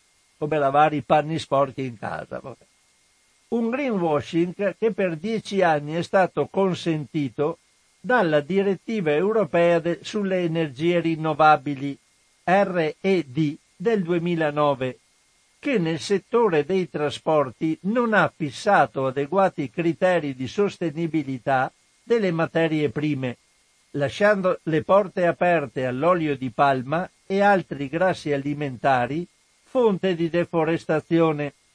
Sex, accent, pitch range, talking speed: male, native, 145-185 Hz, 100 wpm